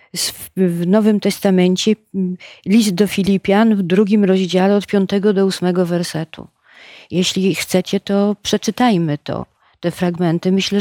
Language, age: Polish, 40-59